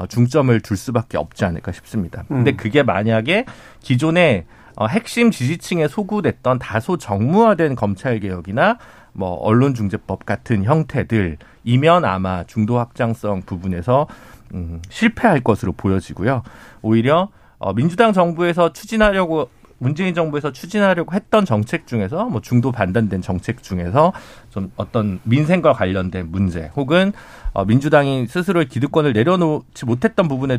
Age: 40-59